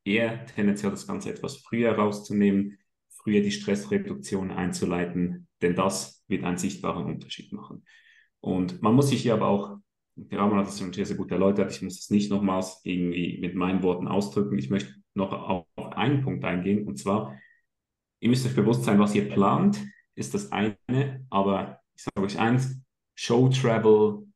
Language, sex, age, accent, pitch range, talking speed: German, male, 30-49, German, 95-115 Hz, 175 wpm